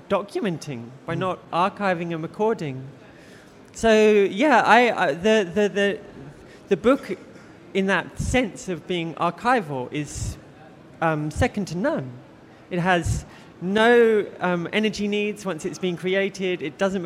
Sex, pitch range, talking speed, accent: male, 165-200 Hz, 135 wpm, British